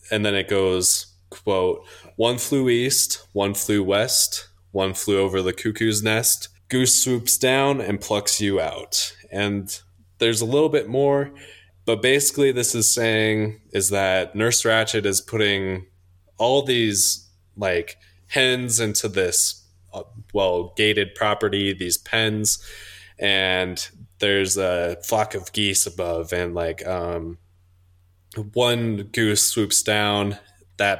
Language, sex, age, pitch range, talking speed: English, male, 20-39, 90-110 Hz, 130 wpm